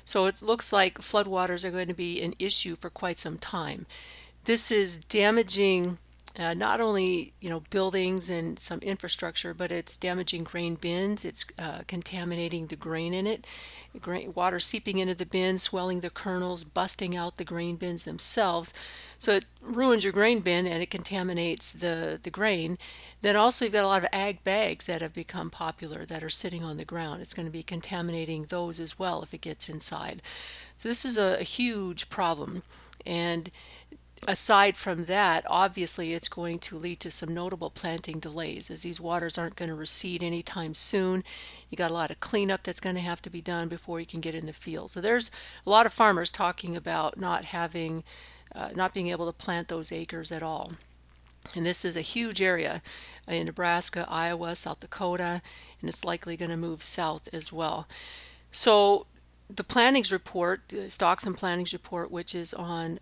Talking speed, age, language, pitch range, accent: 190 wpm, 50-69, English, 170-190 Hz, American